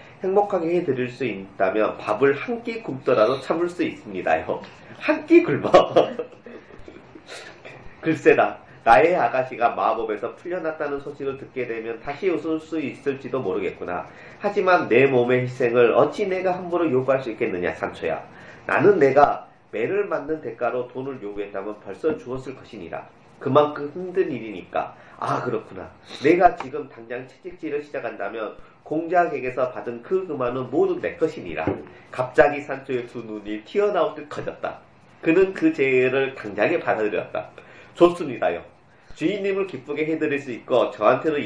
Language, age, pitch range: Korean, 40-59, 125-195 Hz